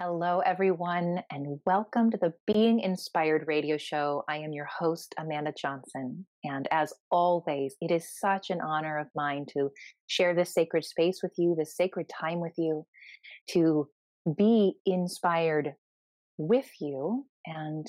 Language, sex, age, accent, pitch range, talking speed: English, female, 30-49, American, 155-185 Hz, 150 wpm